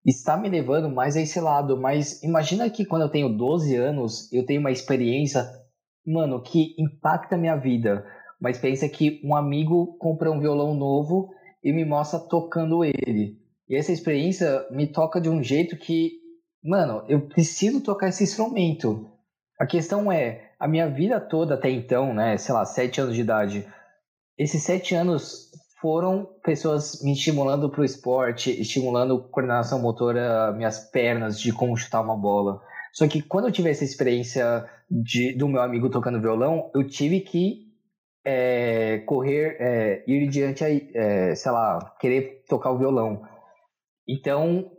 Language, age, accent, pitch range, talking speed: Portuguese, 20-39, Brazilian, 125-165 Hz, 160 wpm